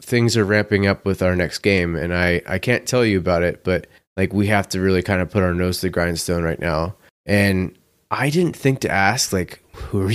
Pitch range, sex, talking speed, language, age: 90-115 Hz, male, 240 wpm, English, 20-39